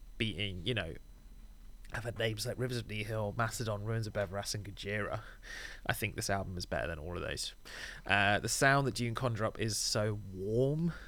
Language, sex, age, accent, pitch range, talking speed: English, male, 30-49, British, 100-120 Hz, 200 wpm